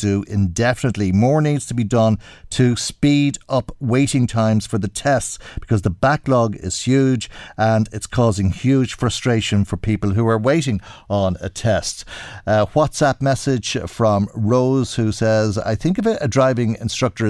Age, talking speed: 50-69, 160 wpm